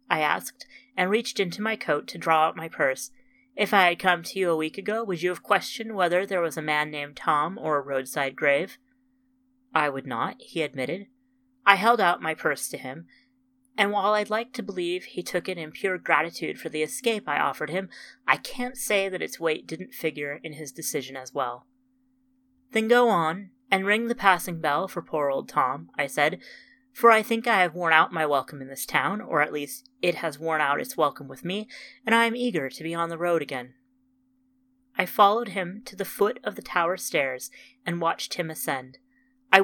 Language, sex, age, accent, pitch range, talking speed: English, female, 30-49, American, 160-240 Hz, 215 wpm